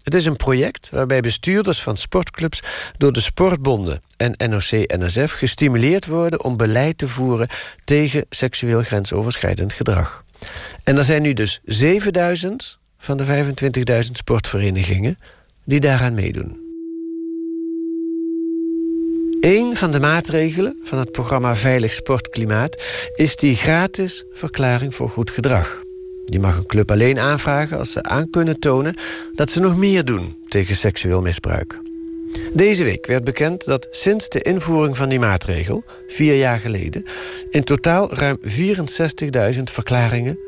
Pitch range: 115-170 Hz